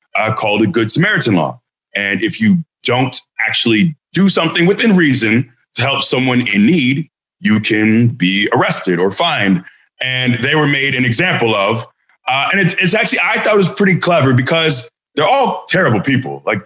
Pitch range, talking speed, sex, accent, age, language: 110-145 Hz, 175 wpm, male, American, 20-39, English